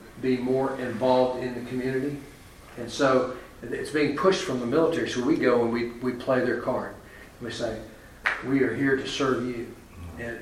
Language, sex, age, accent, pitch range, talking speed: English, male, 40-59, American, 115-140 Hz, 190 wpm